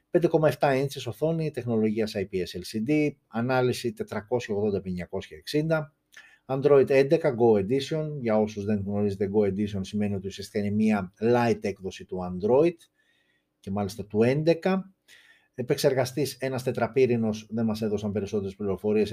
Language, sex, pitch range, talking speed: Greek, male, 105-145 Hz, 120 wpm